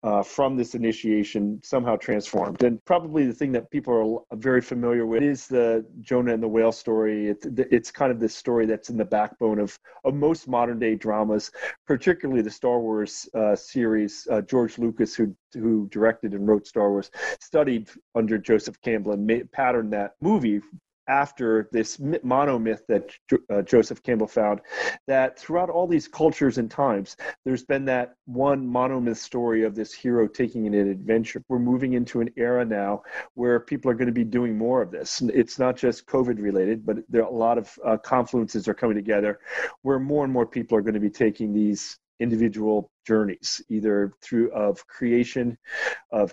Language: English